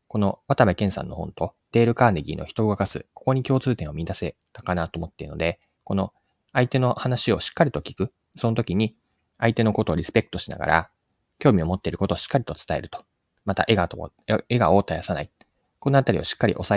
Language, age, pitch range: Japanese, 20-39, 85-125 Hz